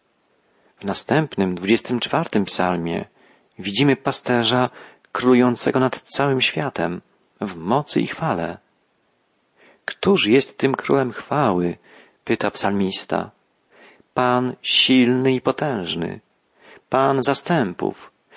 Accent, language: native, Polish